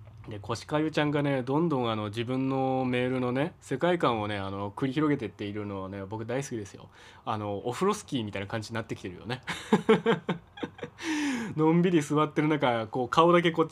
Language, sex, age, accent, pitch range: Japanese, male, 20-39, native, 110-165 Hz